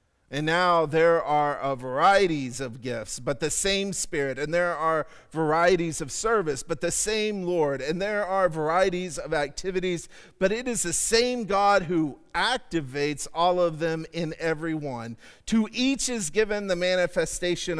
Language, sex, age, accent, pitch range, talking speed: English, male, 40-59, American, 150-195 Hz, 160 wpm